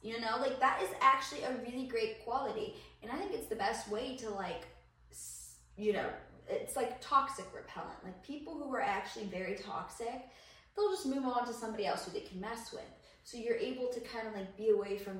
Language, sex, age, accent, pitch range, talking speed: English, female, 10-29, American, 195-250 Hz, 215 wpm